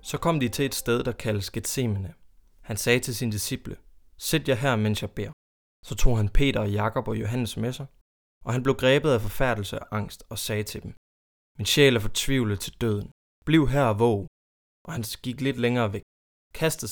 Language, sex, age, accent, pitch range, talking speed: Danish, male, 20-39, native, 100-130 Hz, 210 wpm